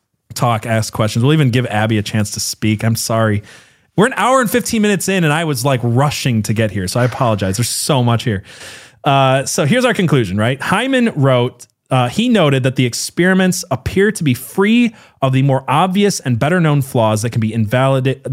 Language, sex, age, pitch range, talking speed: English, male, 30-49, 110-140 Hz, 215 wpm